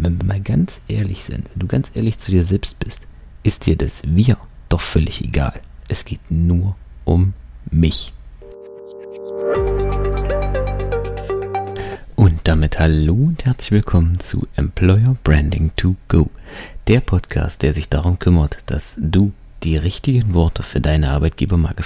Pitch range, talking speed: 80-105 Hz, 140 wpm